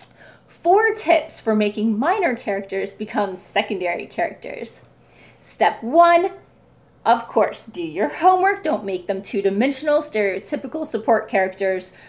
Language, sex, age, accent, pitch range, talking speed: English, female, 30-49, American, 225-325 Hz, 115 wpm